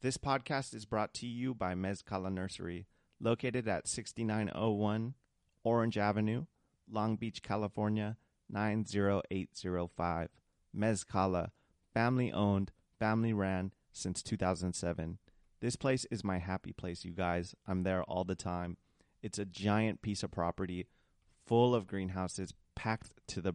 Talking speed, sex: 120 wpm, male